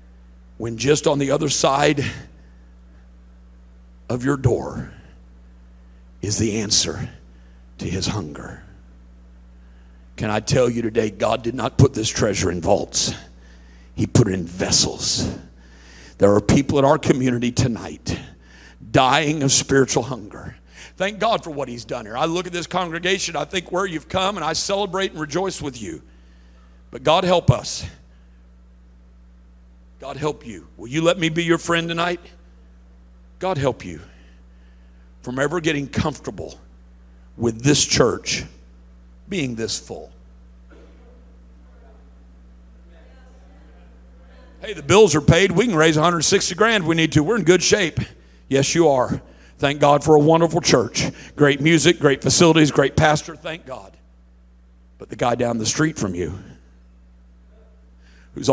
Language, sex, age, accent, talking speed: English, male, 50-69, American, 145 wpm